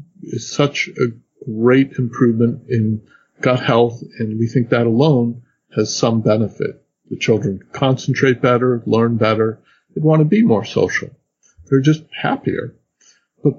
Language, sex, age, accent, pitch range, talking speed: English, male, 50-69, American, 110-125 Hz, 140 wpm